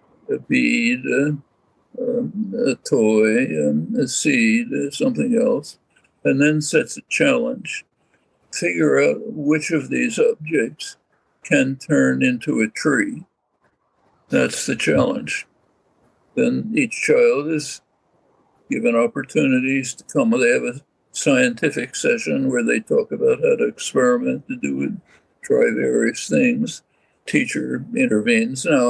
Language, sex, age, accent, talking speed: English, male, 60-79, American, 125 wpm